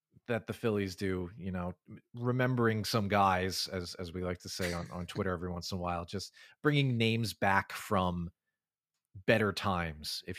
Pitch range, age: 90-120 Hz, 30-49